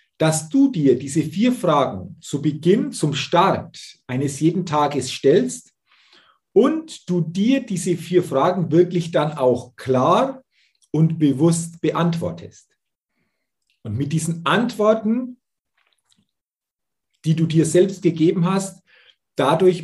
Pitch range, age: 130-185 Hz, 40-59